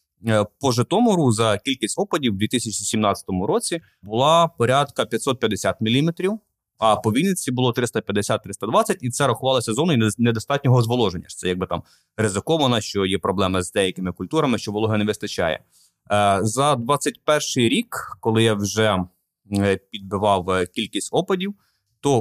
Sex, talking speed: male, 125 wpm